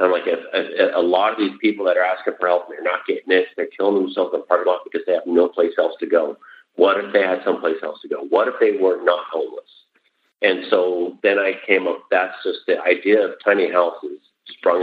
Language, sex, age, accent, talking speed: English, male, 40-59, American, 240 wpm